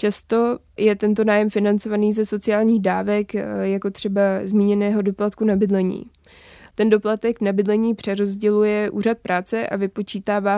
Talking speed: 125 wpm